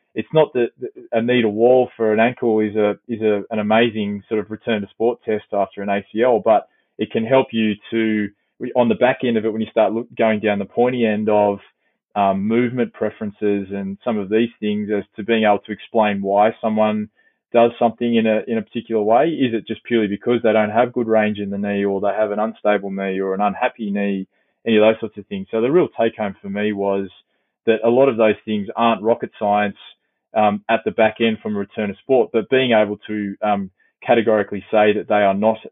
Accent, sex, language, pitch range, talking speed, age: Australian, male, English, 100-115 Hz, 230 wpm, 20-39